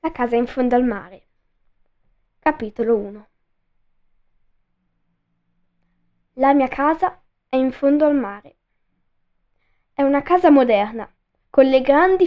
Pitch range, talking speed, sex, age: 225-285 Hz, 115 wpm, female, 10-29